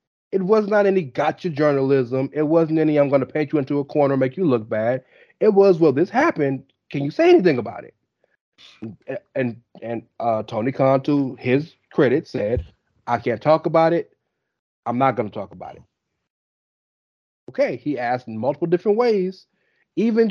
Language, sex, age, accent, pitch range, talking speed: English, male, 30-49, American, 125-175 Hz, 185 wpm